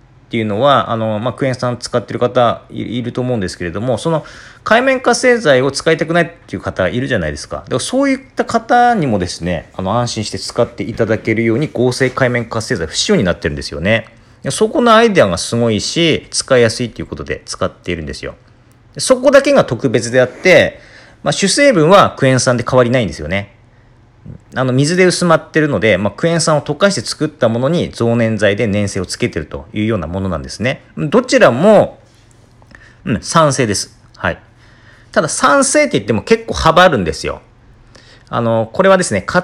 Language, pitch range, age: Japanese, 110-150 Hz, 40-59